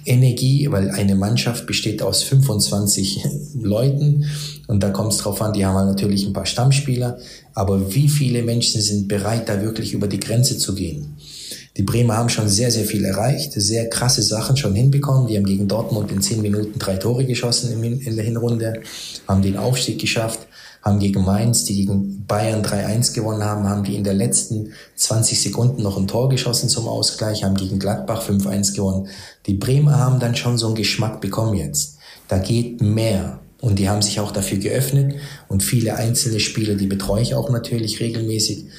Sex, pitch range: male, 100-120 Hz